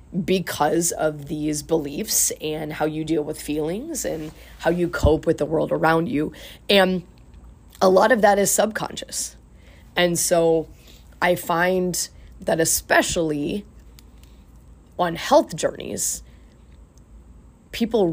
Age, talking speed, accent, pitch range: 20-39, 120 wpm, American, 130-185 Hz